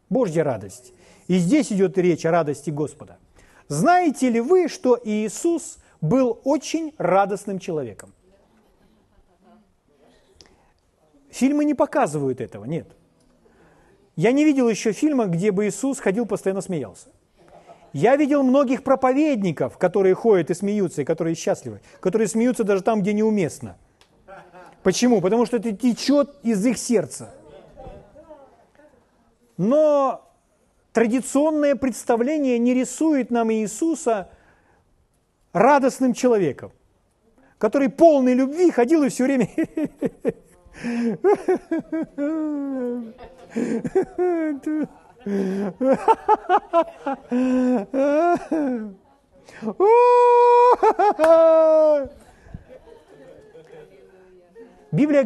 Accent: native